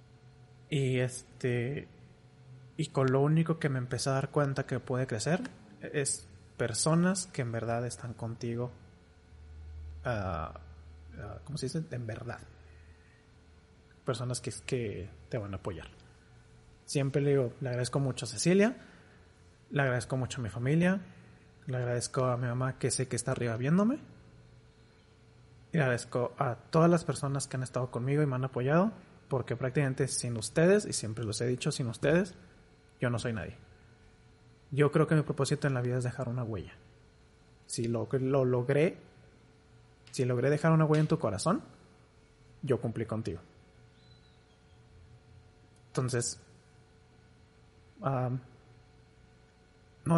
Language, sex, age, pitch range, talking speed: Spanish, male, 30-49, 110-140 Hz, 145 wpm